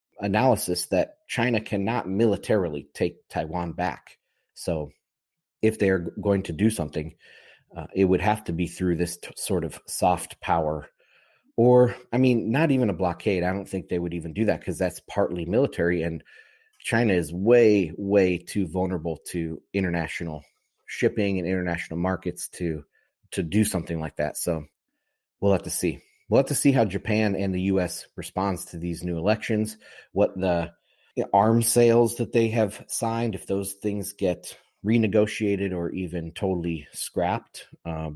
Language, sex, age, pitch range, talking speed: English, male, 30-49, 85-110 Hz, 160 wpm